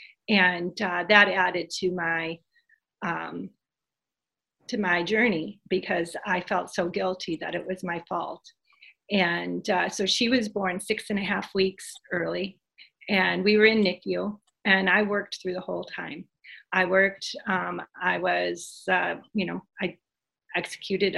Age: 40-59